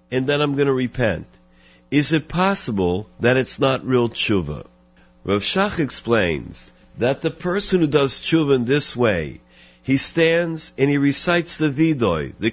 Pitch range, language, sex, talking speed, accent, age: 95-150 Hz, English, male, 165 wpm, American, 50-69